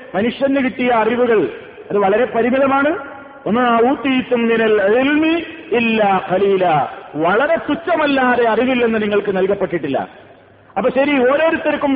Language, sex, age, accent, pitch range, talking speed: Malayalam, male, 50-69, native, 215-285 Hz, 90 wpm